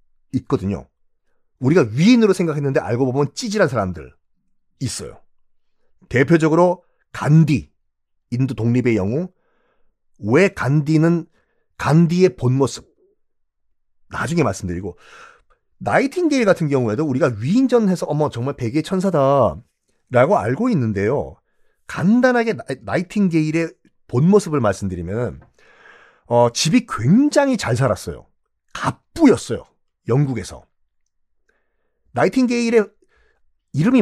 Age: 40-59